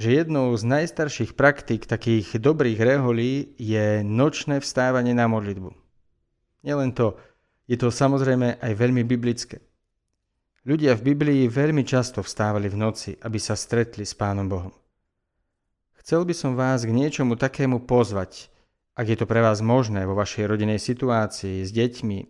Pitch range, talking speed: 105-135 Hz, 150 wpm